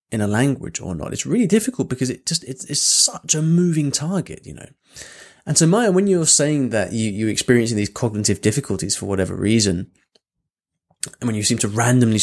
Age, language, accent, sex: 20-39, English, British, male